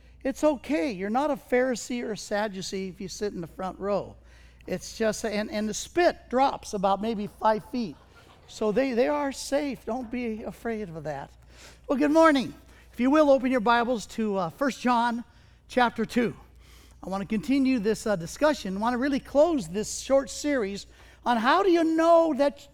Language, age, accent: English, 50-69, American